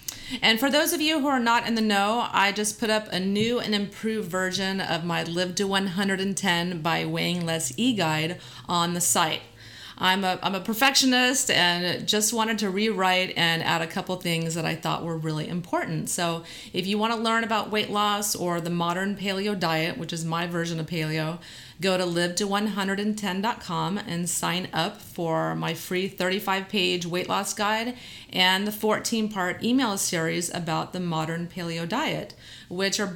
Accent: American